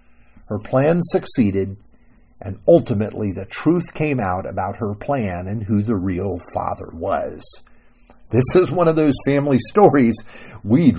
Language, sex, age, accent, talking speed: English, male, 50-69, American, 140 wpm